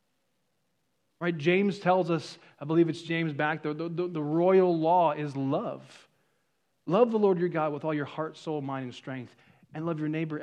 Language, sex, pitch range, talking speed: English, male, 150-185 Hz, 190 wpm